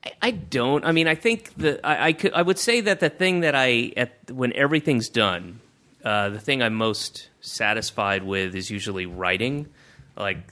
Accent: American